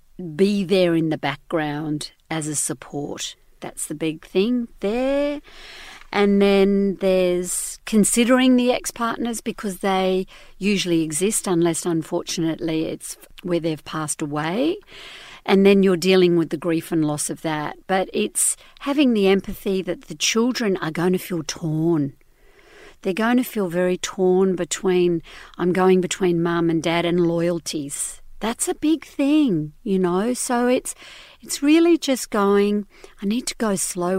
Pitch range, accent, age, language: 170-210 Hz, Australian, 50-69, English